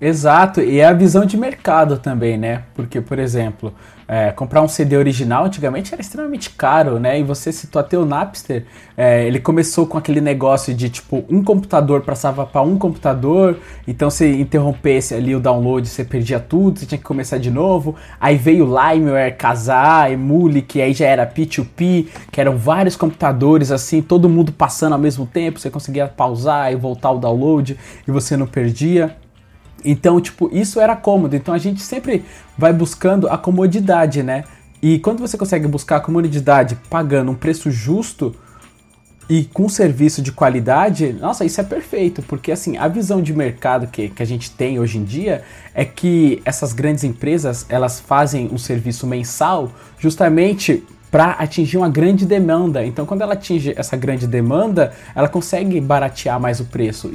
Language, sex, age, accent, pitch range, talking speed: Portuguese, male, 20-39, Brazilian, 130-170 Hz, 175 wpm